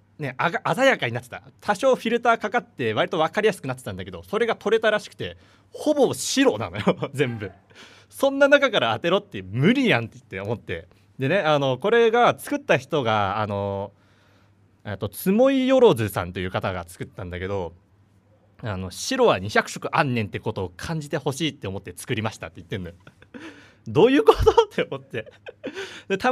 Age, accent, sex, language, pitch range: 30-49, native, male, Japanese, 100-165 Hz